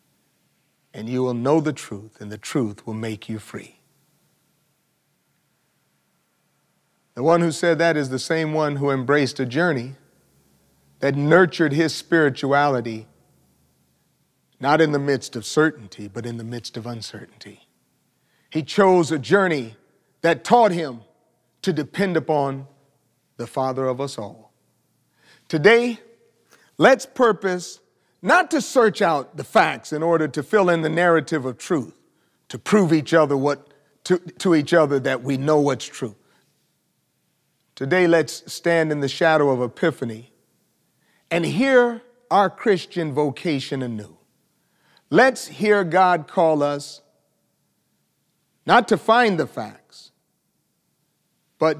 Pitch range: 130-175 Hz